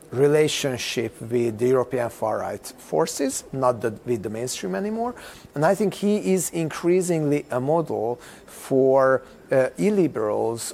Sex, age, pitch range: male, 40-59, 130-170 Hz